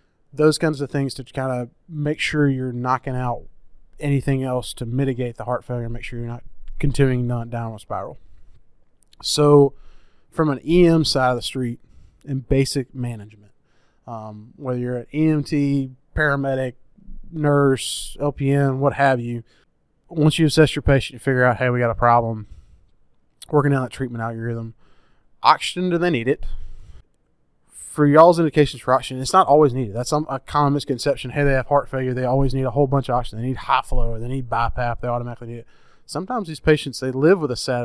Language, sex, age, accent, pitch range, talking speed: English, male, 20-39, American, 120-145 Hz, 195 wpm